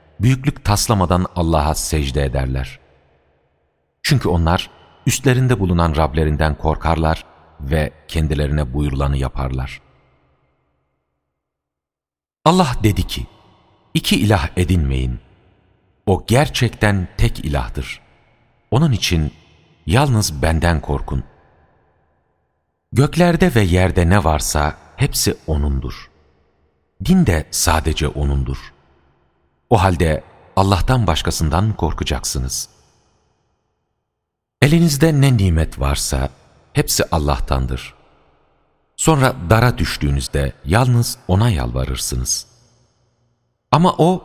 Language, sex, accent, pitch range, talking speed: Turkish, male, native, 70-105 Hz, 80 wpm